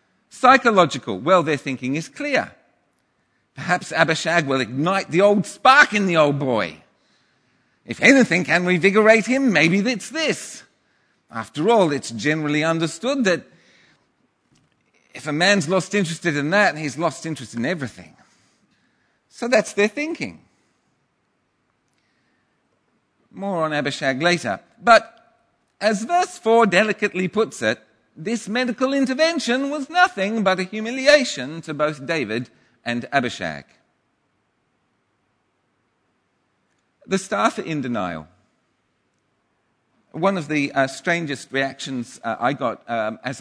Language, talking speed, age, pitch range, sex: English, 120 wpm, 50-69, 125-205 Hz, male